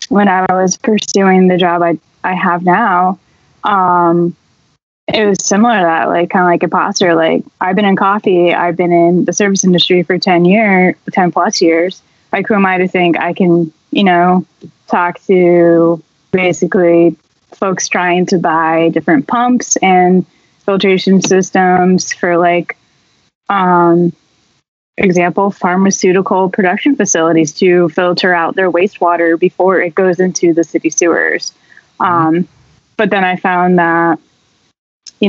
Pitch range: 170-195 Hz